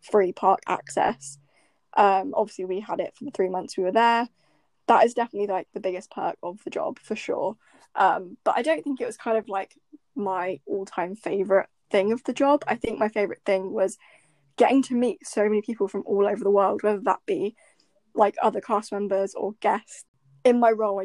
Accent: British